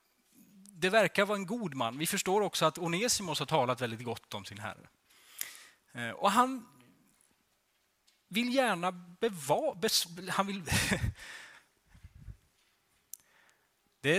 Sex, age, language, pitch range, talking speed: male, 30-49, Swedish, 125-190 Hz, 100 wpm